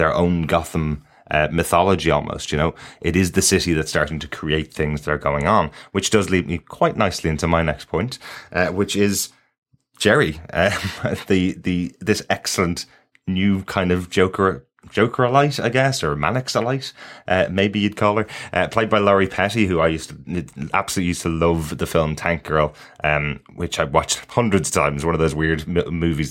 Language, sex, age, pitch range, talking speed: English, male, 20-39, 80-105 Hz, 190 wpm